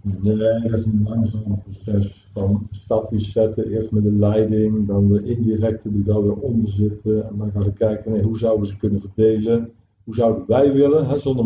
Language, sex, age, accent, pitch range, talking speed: Dutch, male, 50-69, Dutch, 100-125 Hz, 205 wpm